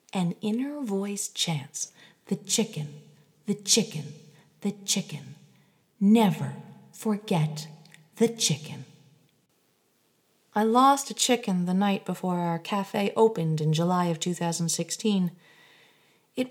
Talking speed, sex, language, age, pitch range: 105 wpm, female, English, 50-69, 165-230 Hz